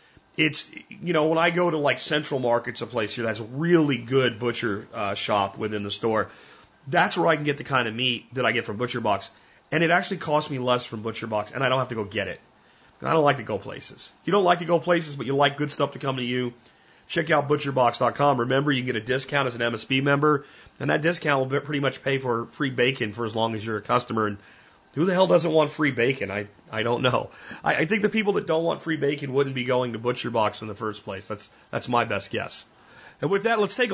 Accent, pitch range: American, 115-155 Hz